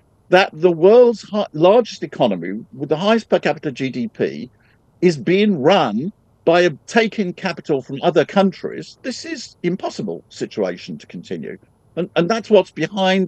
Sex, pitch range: male, 125-205 Hz